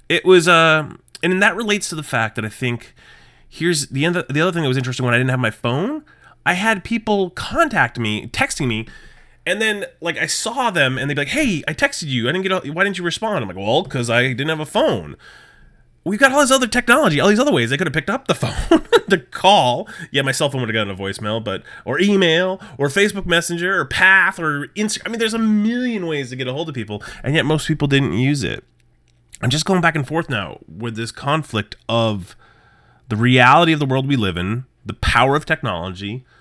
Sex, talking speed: male, 235 wpm